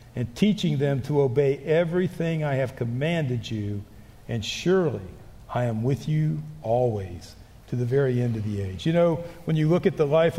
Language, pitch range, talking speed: English, 120-170 Hz, 185 wpm